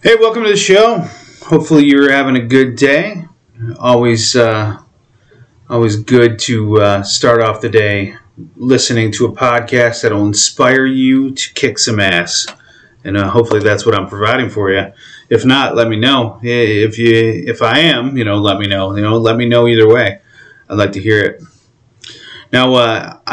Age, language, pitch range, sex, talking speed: 30-49, English, 105-125 Hz, male, 185 wpm